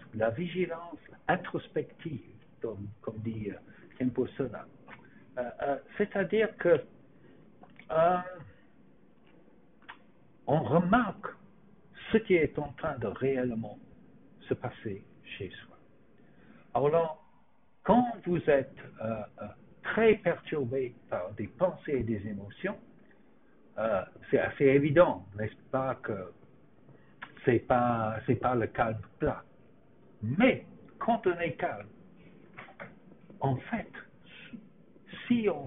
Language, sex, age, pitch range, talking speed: English, male, 60-79, 125-200 Hz, 105 wpm